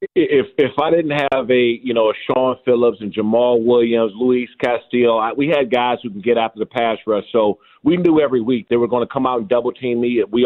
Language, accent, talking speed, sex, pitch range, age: English, American, 240 wpm, male, 120-145 Hz, 40-59